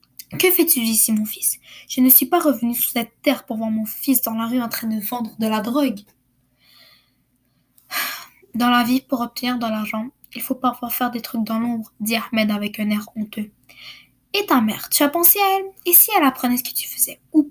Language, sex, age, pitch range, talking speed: French, female, 10-29, 225-295 Hz, 225 wpm